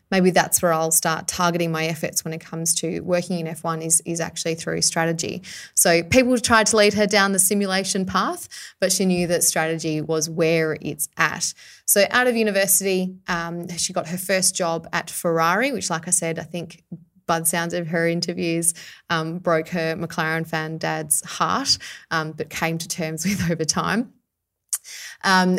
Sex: female